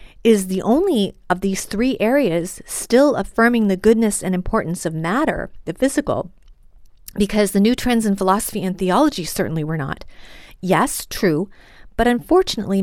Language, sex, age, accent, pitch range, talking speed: English, female, 40-59, American, 185-230 Hz, 150 wpm